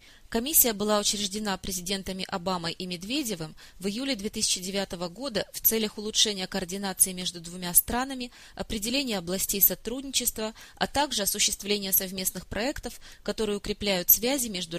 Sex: female